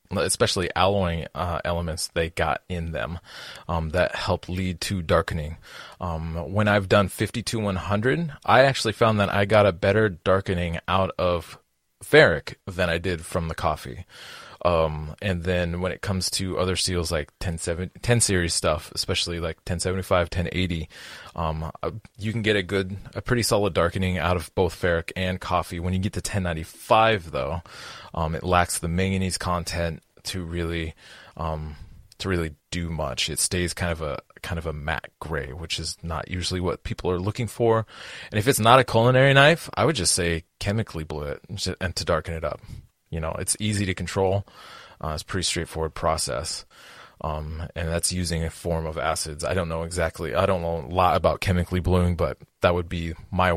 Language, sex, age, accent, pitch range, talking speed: English, male, 20-39, American, 80-95 Hz, 185 wpm